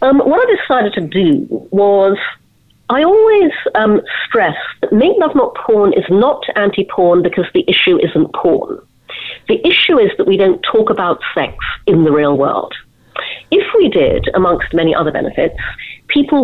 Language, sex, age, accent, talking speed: English, female, 40-59, British, 165 wpm